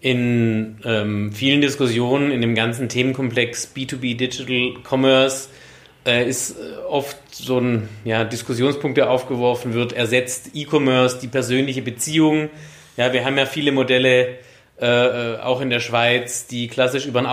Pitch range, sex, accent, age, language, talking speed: 125-140 Hz, male, German, 30-49, German, 140 wpm